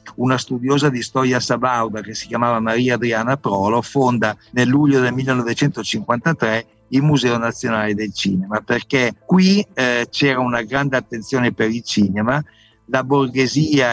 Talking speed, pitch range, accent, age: 140 wpm, 110-140 Hz, native, 50-69